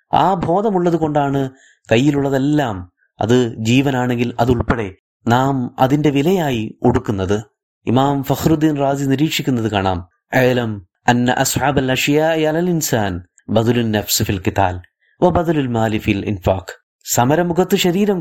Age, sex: 30-49, male